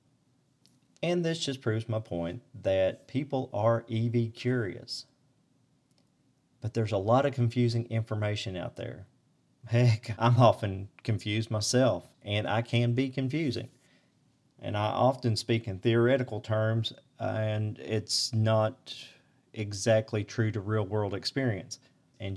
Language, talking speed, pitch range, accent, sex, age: English, 125 wpm, 100-120 Hz, American, male, 40-59